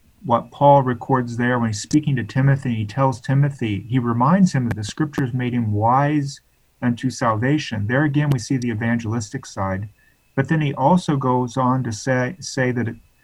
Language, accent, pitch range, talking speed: English, American, 110-135 Hz, 180 wpm